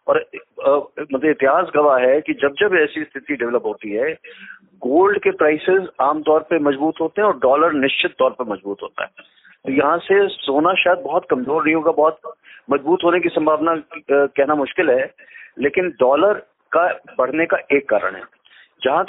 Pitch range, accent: 145-210 Hz, native